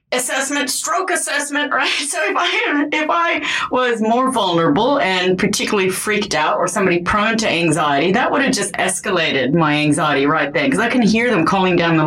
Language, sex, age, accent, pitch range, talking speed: English, female, 30-49, American, 165-230 Hz, 190 wpm